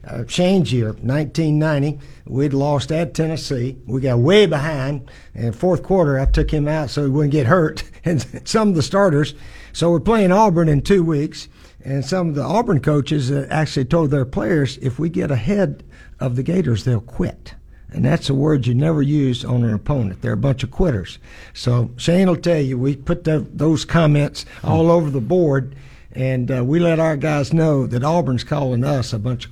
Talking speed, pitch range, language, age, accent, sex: 195 wpm, 120-155 Hz, English, 60-79, American, male